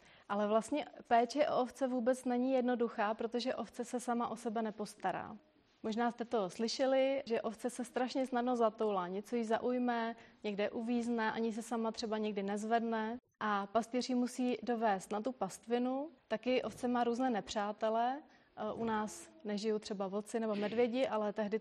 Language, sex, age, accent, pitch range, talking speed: Czech, female, 30-49, native, 215-245 Hz, 160 wpm